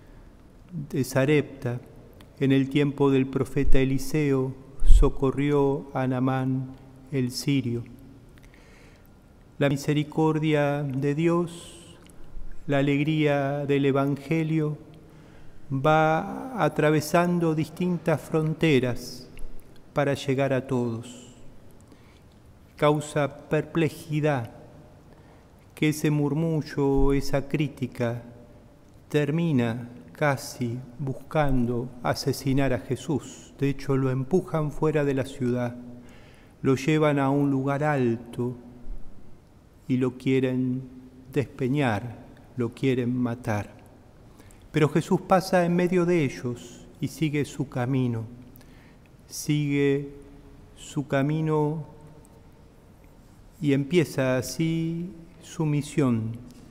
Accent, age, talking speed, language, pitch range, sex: Argentinian, 40-59, 85 wpm, Spanish, 125-150 Hz, male